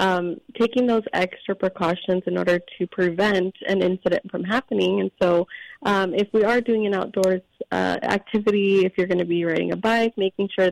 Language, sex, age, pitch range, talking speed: English, female, 20-39, 175-205 Hz, 190 wpm